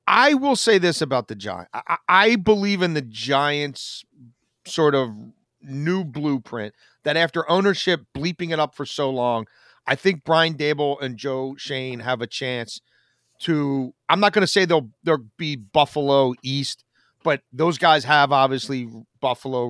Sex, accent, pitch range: male, American, 125-150 Hz